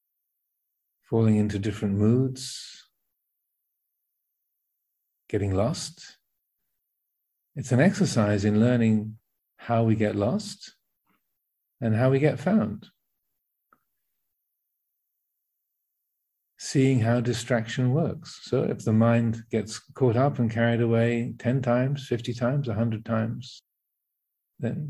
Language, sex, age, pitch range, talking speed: English, male, 50-69, 110-135 Hz, 100 wpm